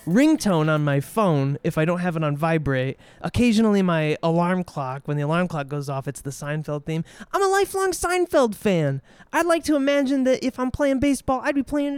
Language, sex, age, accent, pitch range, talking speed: English, male, 20-39, American, 155-215 Hz, 210 wpm